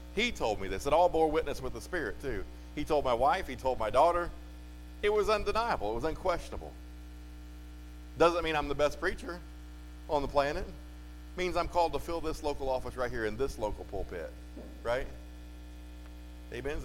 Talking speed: 190 wpm